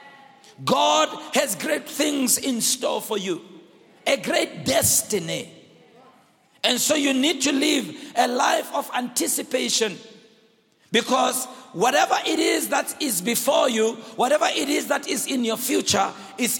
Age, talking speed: 50-69, 135 wpm